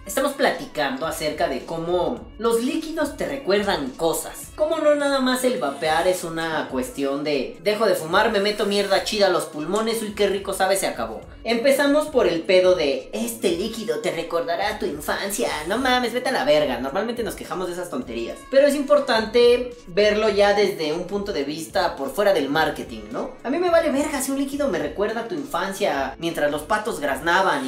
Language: Spanish